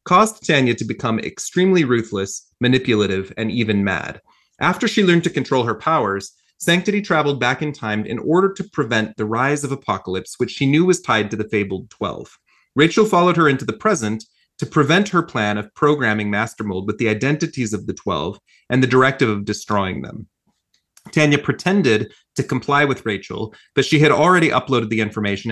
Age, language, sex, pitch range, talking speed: 30-49, English, male, 105-150 Hz, 180 wpm